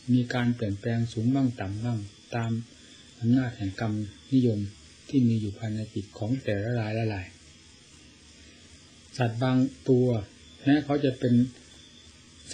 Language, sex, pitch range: Thai, male, 105-125 Hz